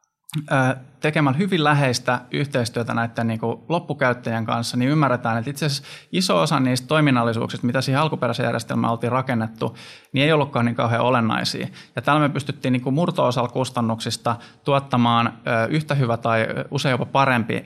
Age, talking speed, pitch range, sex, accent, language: 20-39, 135 wpm, 115-140 Hz, male, native, Finnish